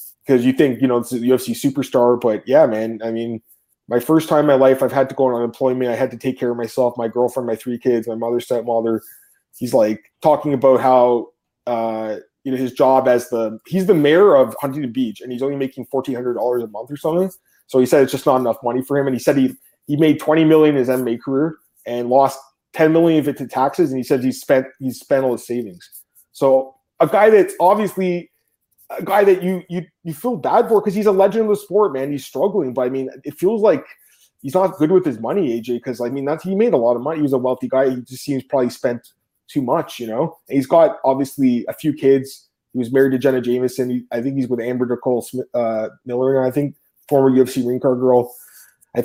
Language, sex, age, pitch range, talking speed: English, male, 20-39, 120-150 Hz, 245 wpm